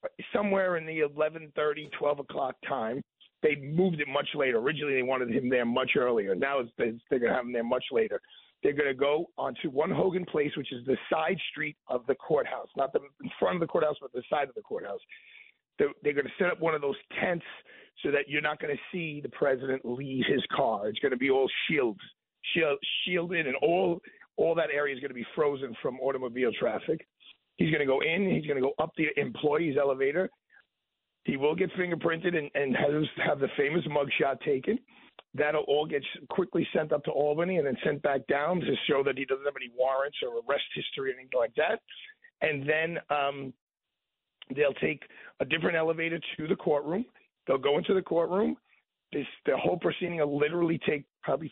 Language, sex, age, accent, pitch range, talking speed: English, male, 50-69, American, 140-185 Hz, 210 wpm